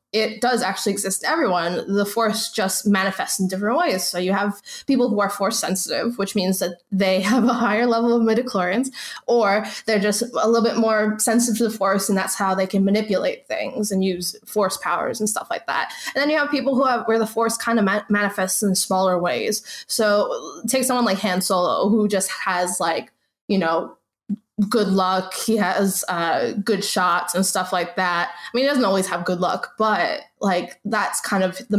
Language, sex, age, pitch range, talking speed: English, female, 20-39, 190-230 Hz, 210 wpm